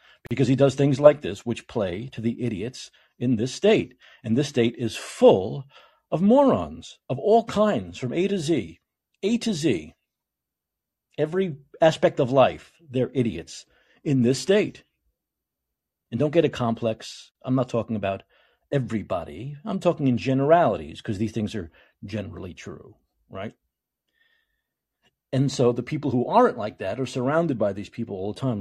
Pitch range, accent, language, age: 115-175 Hz, American, English, 50-69